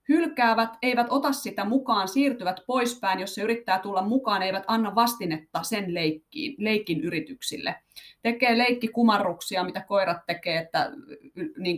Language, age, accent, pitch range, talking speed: Finnish, 30-49, native, 190-245 Hz, 130 wpm